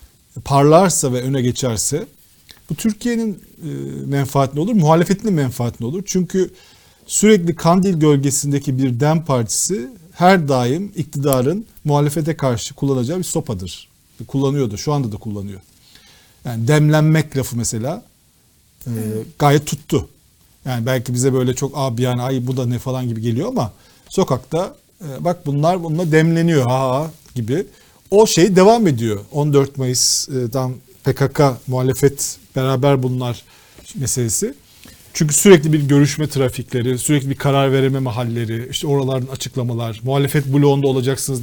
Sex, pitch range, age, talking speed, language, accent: male, 125-155 Hz, 50-69, 135 wpm, Turkish, native